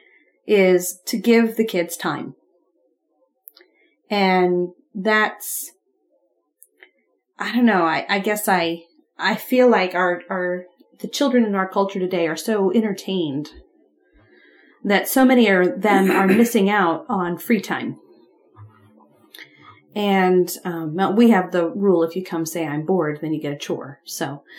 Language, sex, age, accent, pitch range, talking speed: English, female, 30-49, American, 175-230 Hz, 140 wpm